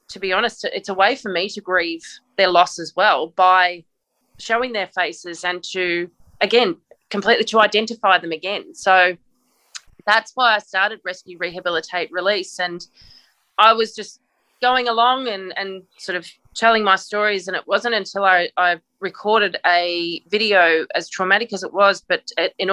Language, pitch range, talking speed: English, 180-210 Hz, 165 wpm